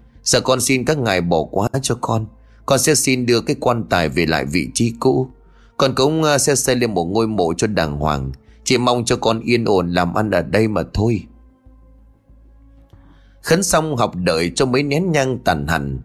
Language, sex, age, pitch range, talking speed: Vietnamese, male, 30-49, 95-135 Hz, 200 wpm